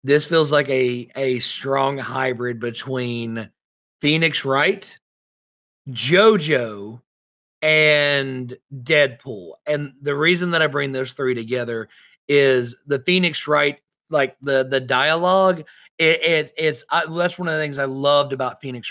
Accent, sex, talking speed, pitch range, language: American, male, 135 wpm, 125-160 Hz, English